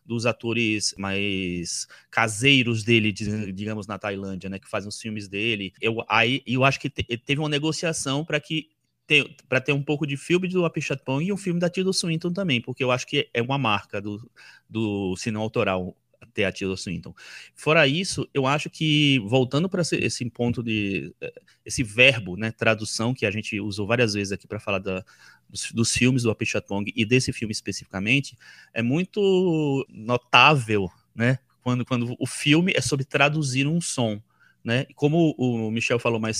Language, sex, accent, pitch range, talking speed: Portuguese, male, Brazilian, 110-150 Hz, 175 wpm